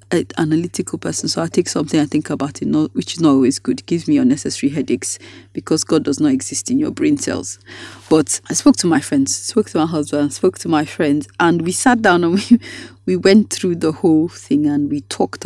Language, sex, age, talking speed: English, female, 30-49, 225 wpm